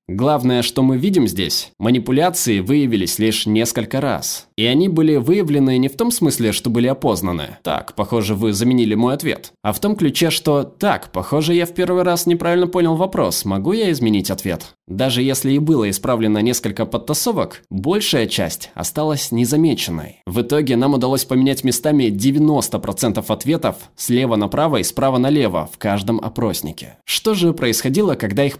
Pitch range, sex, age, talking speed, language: 110-145 Hz, male, 20-39, 160 wpm, Russian